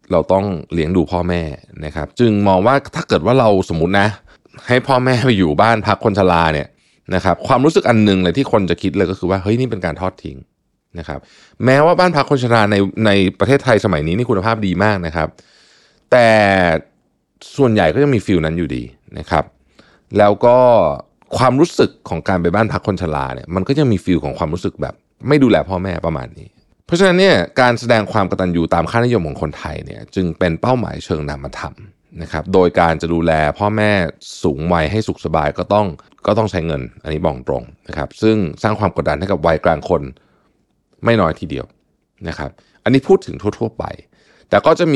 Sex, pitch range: male, 85-115 Hz